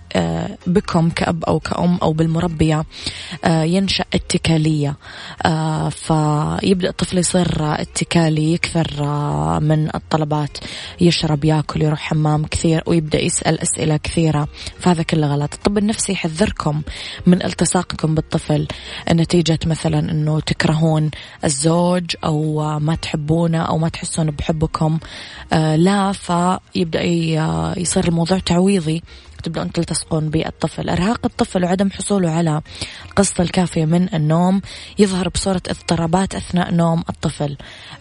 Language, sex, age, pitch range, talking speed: Arabic, female, 20-39, 155-175 Hz, 110 wpm